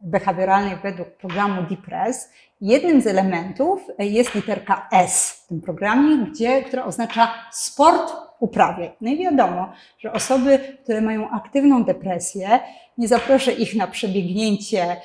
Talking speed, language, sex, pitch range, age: 130 wpm, Polish, female, 195-255 Hz, 30-49